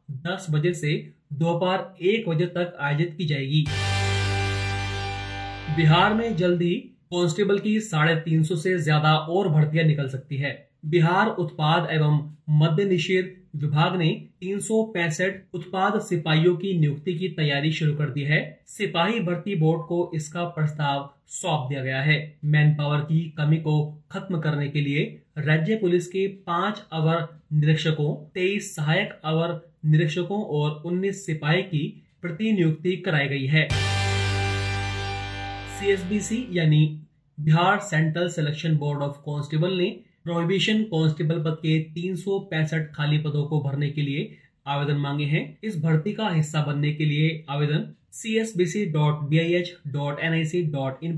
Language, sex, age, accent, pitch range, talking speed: Hindi, male, 30-49, native, 150-180 Hz, 125 wpm